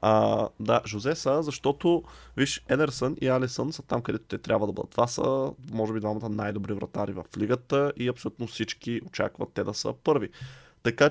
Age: 20-39